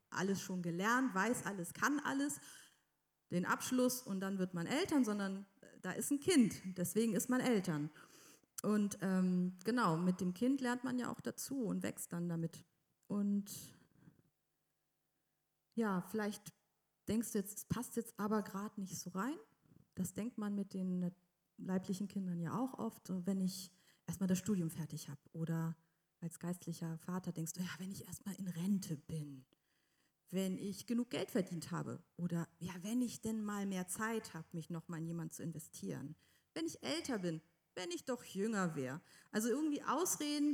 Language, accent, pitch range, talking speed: German, German, 165-215 Hz, 170 wpm